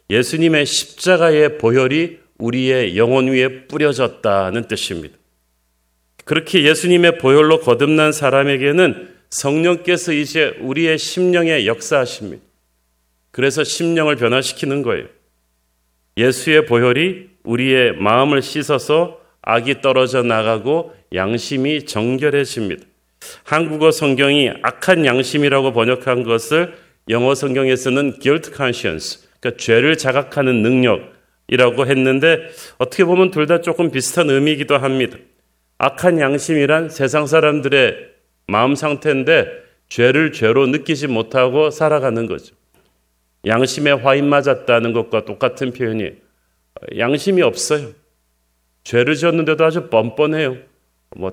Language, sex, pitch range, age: Korean, male, 120-155 Hz, 40-59